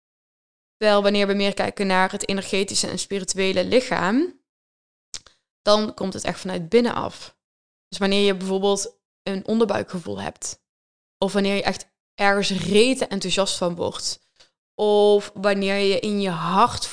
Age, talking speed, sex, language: 10-29, 140 wpm, female, Dutch